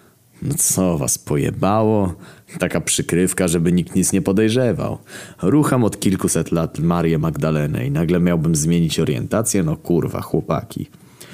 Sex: male